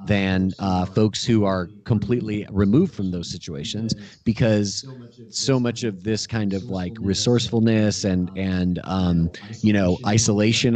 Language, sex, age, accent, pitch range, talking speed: English, male, 30-49, American, 95-115 Hz, 140 wpm